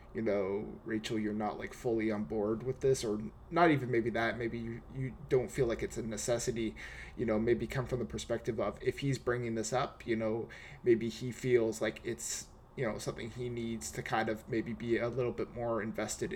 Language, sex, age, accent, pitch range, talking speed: English, male, 20-39, American, 110-125 Hz, 220 wpm